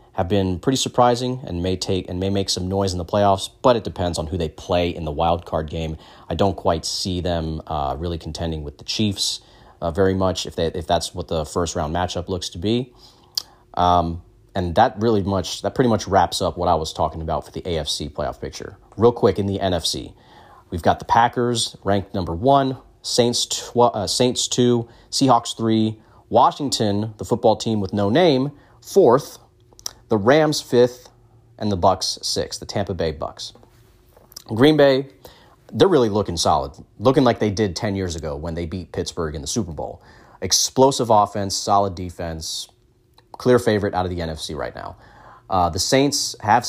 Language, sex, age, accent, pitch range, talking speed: English, male, 30-49, American, 90-120 Hz, 190 wpm